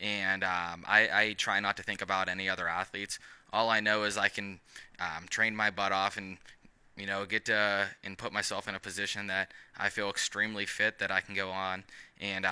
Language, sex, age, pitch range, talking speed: English, male, 20-39, 95-105 Hz, 215 wpm